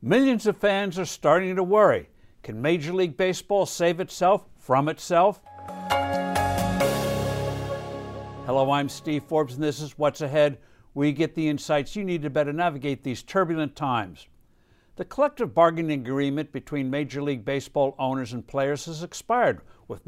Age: 60-79